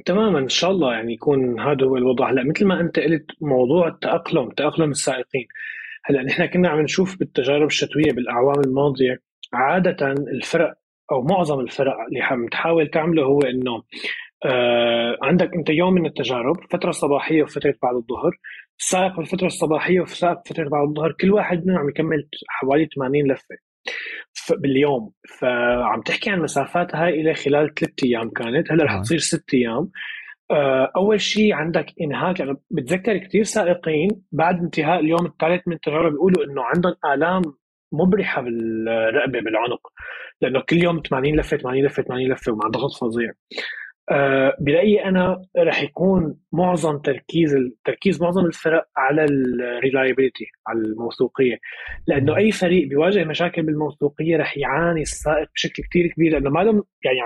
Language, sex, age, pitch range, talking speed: Arabic, male, 20-39, 135-175 Hz, 150 wpm